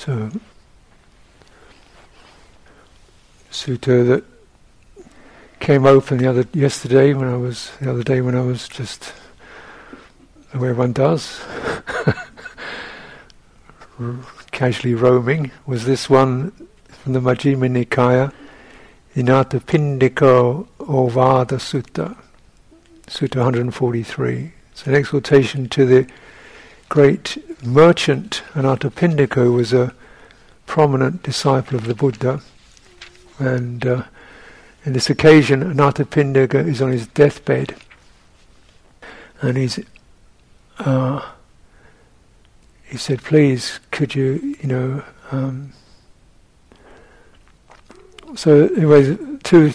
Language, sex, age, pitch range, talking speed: English, male, 60-79, 125-145 Hz, 95 wpm